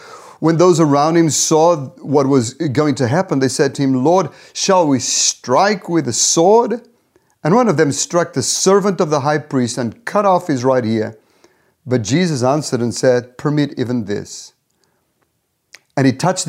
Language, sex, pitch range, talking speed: English, male, 125-160 Hz, 180 wpm